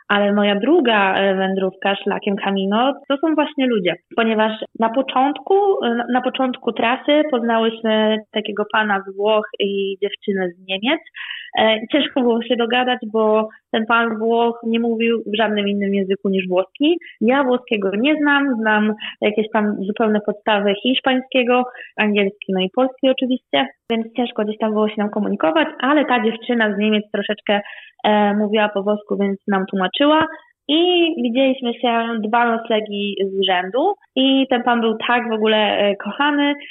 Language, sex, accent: Polish, female, native